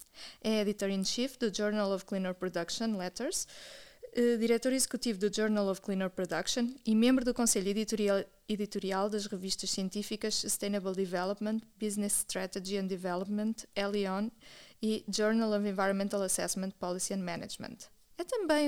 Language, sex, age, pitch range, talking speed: Portuguese, female, 20-39, 195-245 Hz, 130 wpm